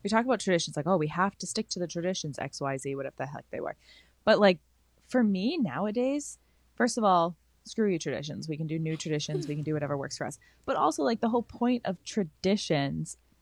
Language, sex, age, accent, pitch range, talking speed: English, female, 20-39, American, 140-195 Hz, 235 wpm